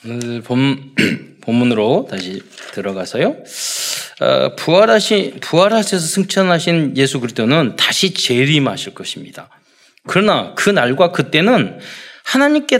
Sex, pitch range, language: male, 120-175 Hz, Korean